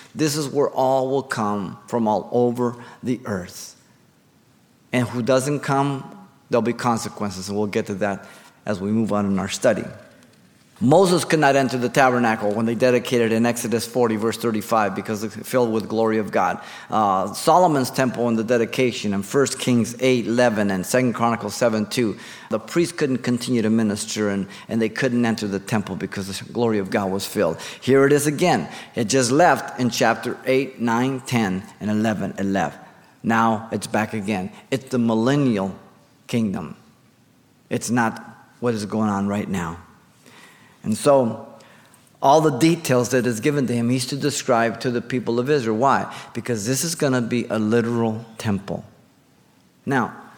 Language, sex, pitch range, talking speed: English, male, 110-140 Hz, 175 wpm